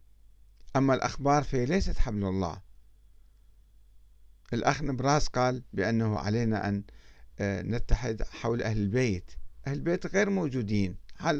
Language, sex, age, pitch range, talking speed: Arabic, male, 50-69, 100-130 Hz, 100 wpm